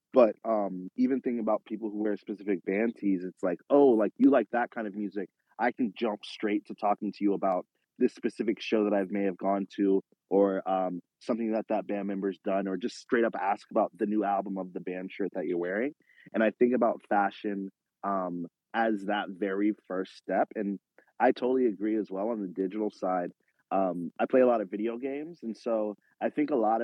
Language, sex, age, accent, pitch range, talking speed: English, male, 30-49, American, 100-115 Hz, 220 wpm